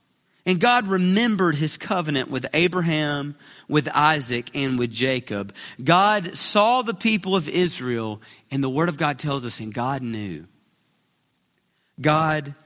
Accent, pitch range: American, 155-195 Hz